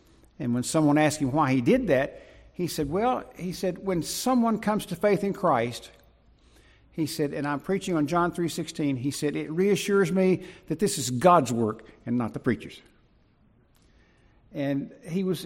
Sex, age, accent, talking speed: male, 60-79, American, 185 wpm